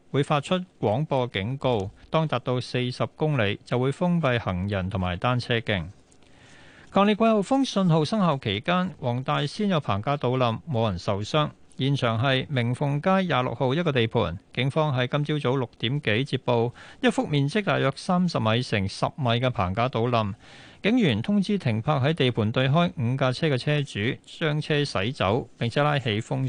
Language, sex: Chinese, male